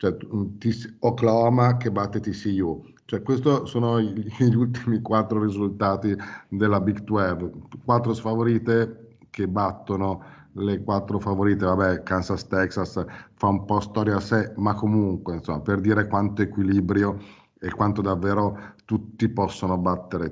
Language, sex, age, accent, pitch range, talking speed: Italian, male, 50-69, native, 95-110 Hz, 125 wpm